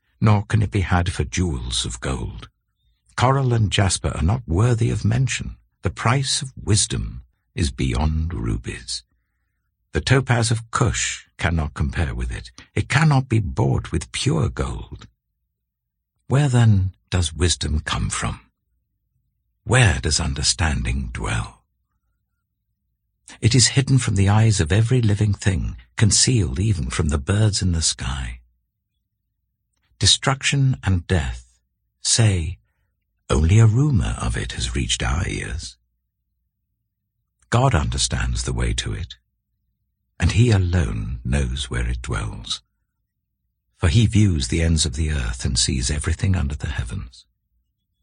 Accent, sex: British, male